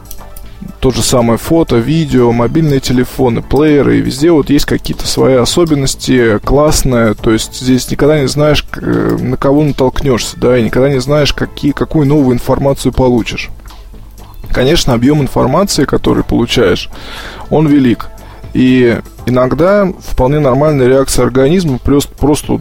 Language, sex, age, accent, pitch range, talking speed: Russian, male, 20-39, native, 120-150 Hz, 125 wpm